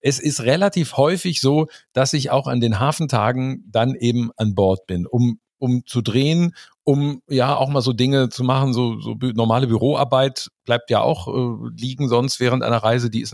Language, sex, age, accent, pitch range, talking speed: German, male, 50-69, German, 105-125 Hz, 195 wpm